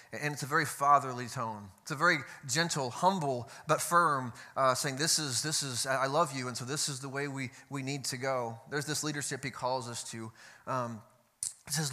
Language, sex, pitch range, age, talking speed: English, male, 125-150 Hz, 30-49, 215 wpm